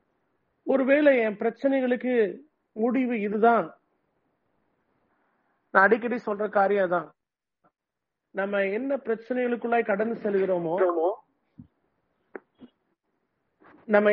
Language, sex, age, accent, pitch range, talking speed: English, male, 40-59, Indian, 200-250 Hz, 65 wpm